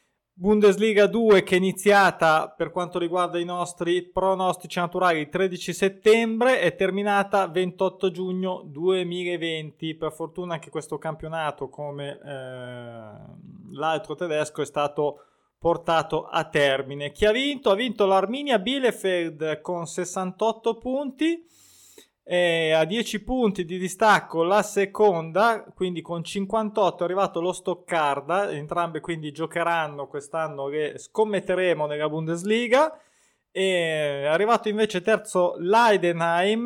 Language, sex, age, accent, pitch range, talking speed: Italian, male, 20-39, native, 160-205 Hz, 120 wpm